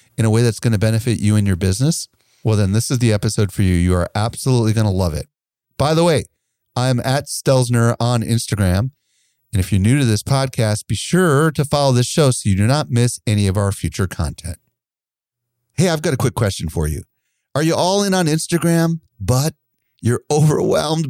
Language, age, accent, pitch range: English, 40-59, American, 105-140 Hz